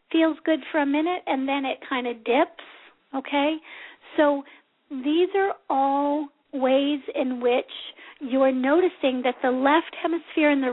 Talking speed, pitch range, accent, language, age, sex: 150 wpm, 250-300 Hz, American, English, 50-69, female